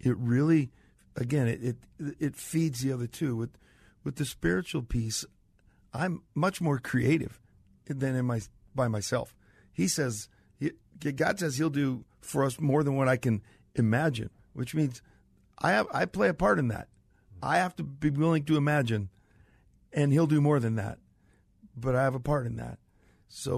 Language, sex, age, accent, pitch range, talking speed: English, male, 50-69, American, 105-140 Hz, 180 wpm